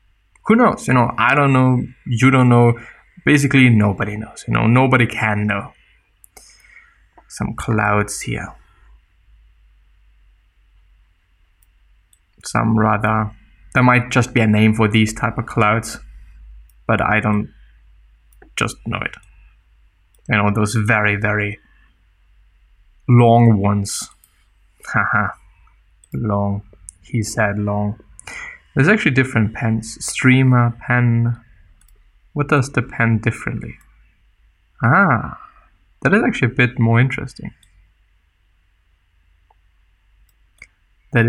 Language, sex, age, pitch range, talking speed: English, male, 20-39, 90-120 Hz, 105 wpm